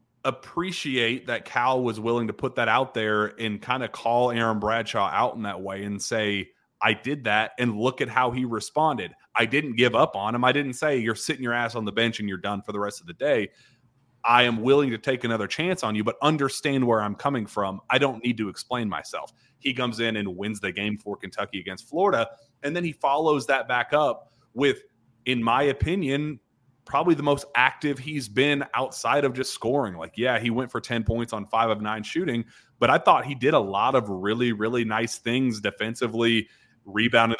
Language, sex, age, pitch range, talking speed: English, male, 30-49, 110-130 Hz, 215 wpm